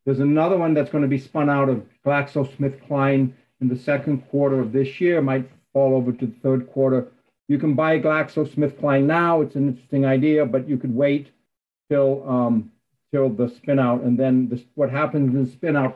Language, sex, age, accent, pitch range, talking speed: English, male, 60-79, American, 130-150 Hz, 195 wpm